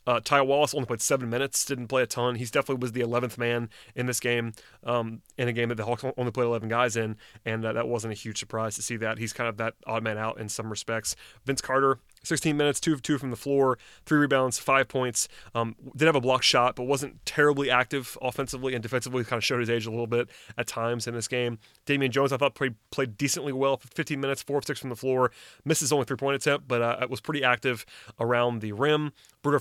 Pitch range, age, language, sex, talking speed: 115-135 Hz, 30-49, English, male, 250 wpm